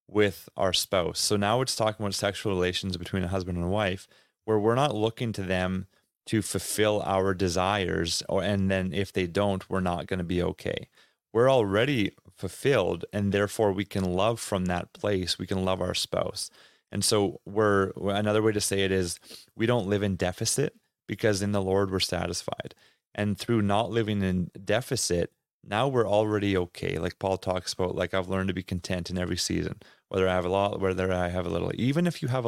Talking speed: 205 wpm